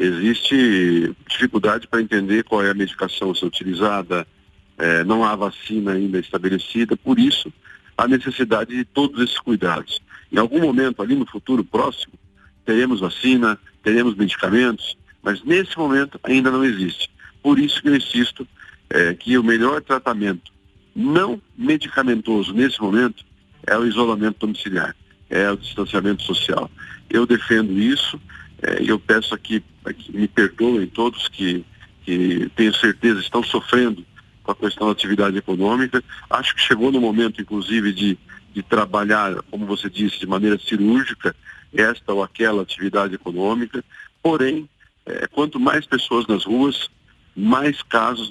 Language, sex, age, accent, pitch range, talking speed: Portuguese, male, 50-69, Brazilian, 100-125 Hz, 140 wpm